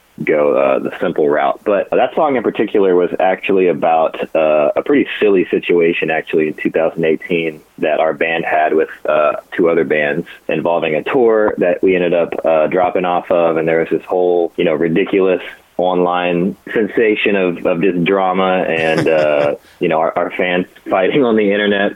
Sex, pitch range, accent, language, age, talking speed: male, 85-110 Hz, American, English, 20-39, 180 wpm